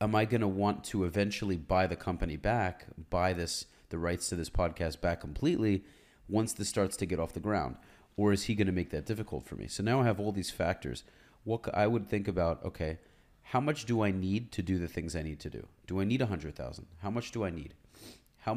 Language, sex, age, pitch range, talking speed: English, male, 30-49, 85-105 Hz, 240 wpm